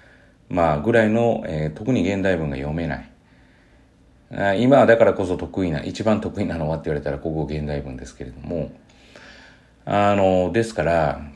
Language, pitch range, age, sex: Japanese, 75-110 Hz, 40-59, male